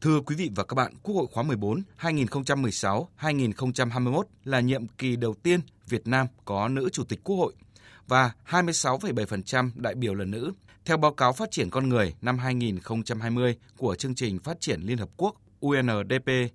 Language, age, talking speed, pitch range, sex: Vietnamese, 20-39, 175 wpm, 115-145 Hz, male